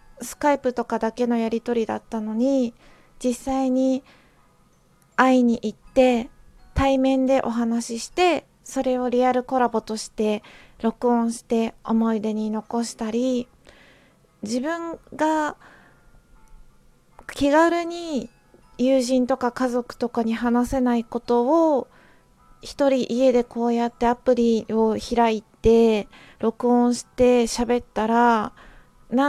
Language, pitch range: Japanese, 230-265 Hz